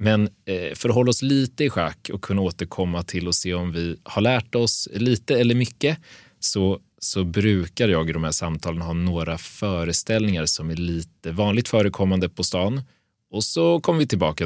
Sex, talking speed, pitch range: male, 185 wpm, 85-110 Hz